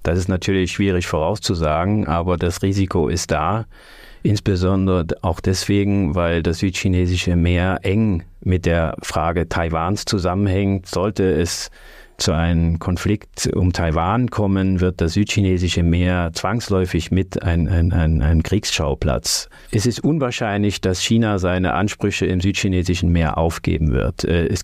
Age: 30-49